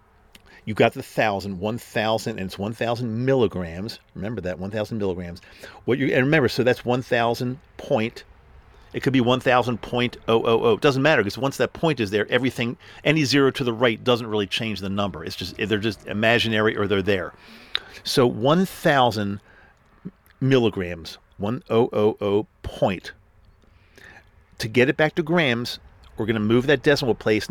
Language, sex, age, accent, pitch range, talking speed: English, male, 50-69, American, 105-130 Hz, 155 wpm